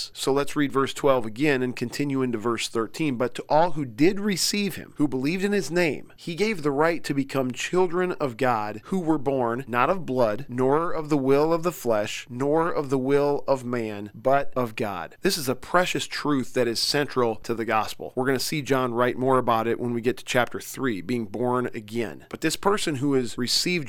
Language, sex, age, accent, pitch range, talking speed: English, male, 40-59, American, 120-145 Hz, 225 wpm